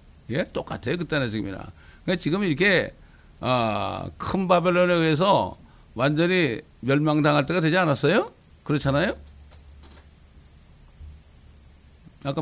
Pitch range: 100-155 Hz